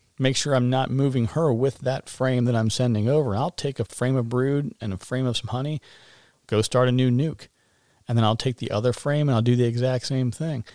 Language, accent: English, American